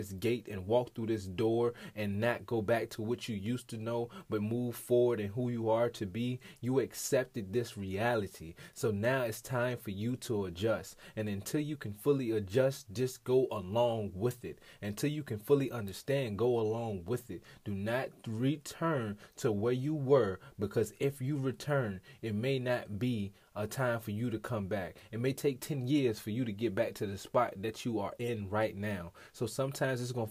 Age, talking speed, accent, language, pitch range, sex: 20-39, 205 wpm, American, English, 105-130 Hz, male